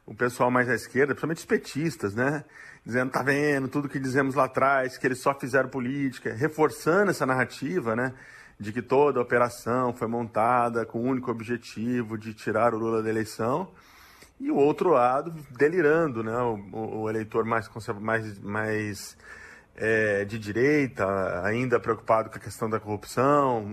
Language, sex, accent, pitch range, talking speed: Portuguese, male, Brazilian, 115-145 Hz, 165 wpm